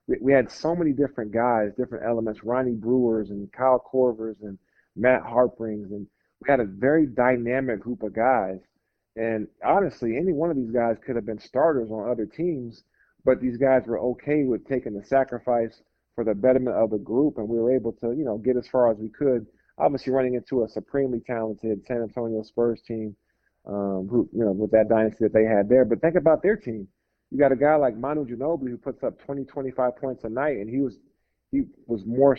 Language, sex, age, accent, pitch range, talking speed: English, male, 40-59, American, 110-135 Hz, 210 wpm